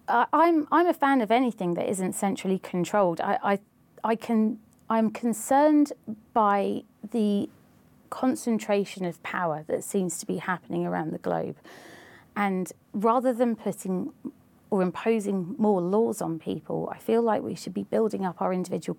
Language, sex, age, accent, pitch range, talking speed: English, female, 30-49, British, 185-230 Hz, 145 wpm